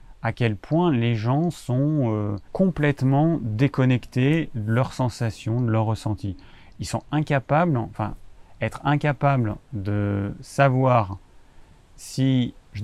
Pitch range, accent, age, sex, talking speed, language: 110-140 Hz, French, 30-49, male, 115 wpm, French